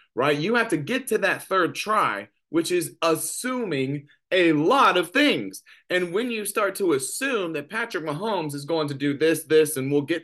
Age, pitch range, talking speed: 30-49, 145-195 Hz, 200 wpm